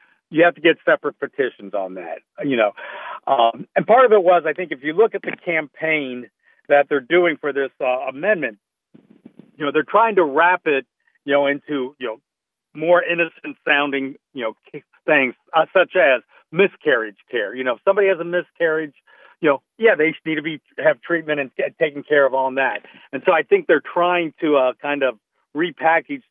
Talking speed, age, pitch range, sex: 200 wpm, 50-69, 130-175 Hz, male